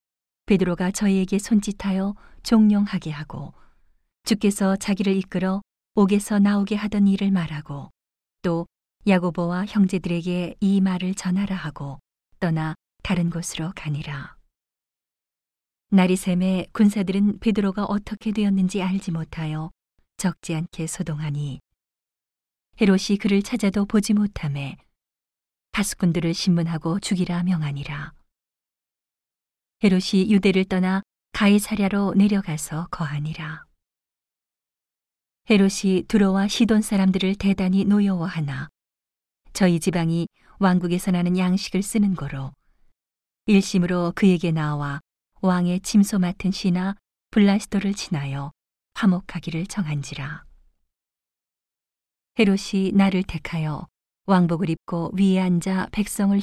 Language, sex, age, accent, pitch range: Korean, female, 40-59, native, 160-200 Hz